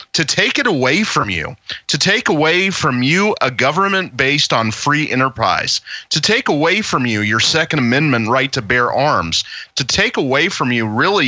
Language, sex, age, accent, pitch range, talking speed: English, male, 30-49, American, 120-160 Hz, 185 wpm